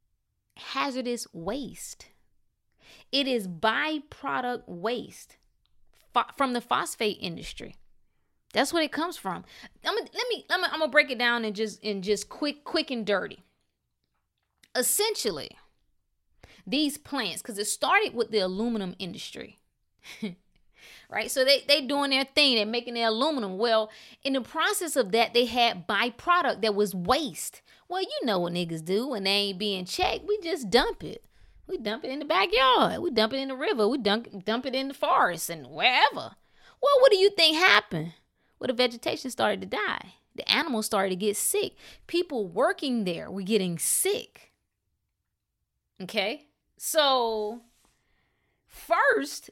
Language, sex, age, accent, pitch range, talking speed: English, female, 20-39, American, 210-300 Hz, 155 wpm